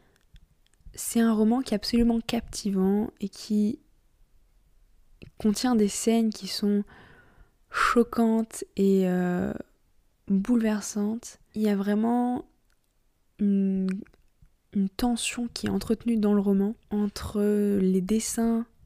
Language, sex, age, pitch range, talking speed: French, female, 20-39, 195-220 Hz, 110 wpm